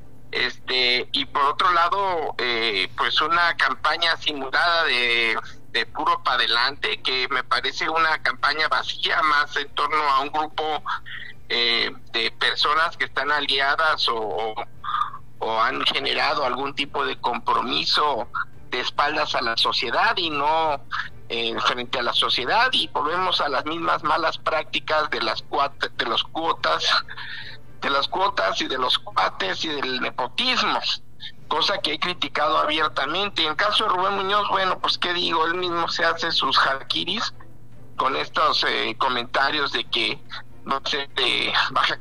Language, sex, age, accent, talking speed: Spanish, male, 50-69, Mexican, 155 wpm